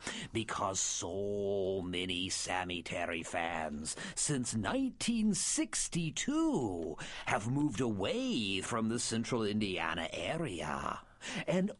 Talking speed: 85 wpm